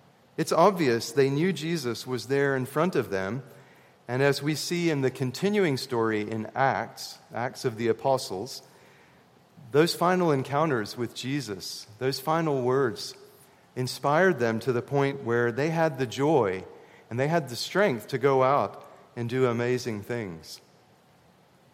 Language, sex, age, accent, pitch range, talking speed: English, male, 40-59, American, 115-160 Hz, 150 wpm